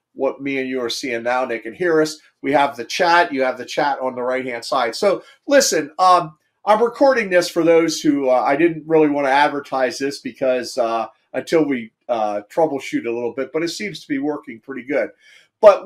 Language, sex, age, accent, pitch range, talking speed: English, male, 40-59, American, 125-170 Hz, 225 wpm